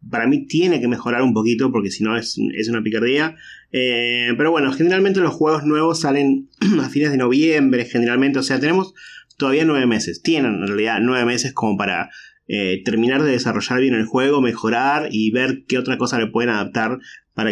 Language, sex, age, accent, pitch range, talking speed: Spanish, male, 20-39, Argentinian, 115-135 Hz, 190 wpm